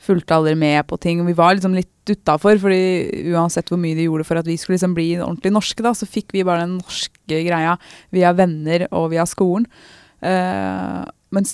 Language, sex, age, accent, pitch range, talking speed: Turkish, female, 20-39, Norwegian, 160-200 Hz, 215 wpm